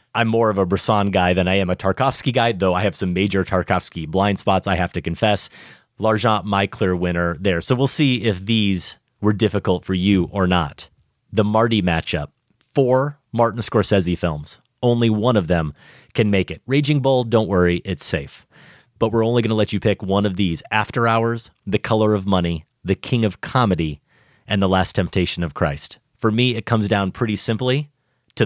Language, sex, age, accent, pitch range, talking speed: English, male, 30-49, American, 95-120 Hz, 200 wpm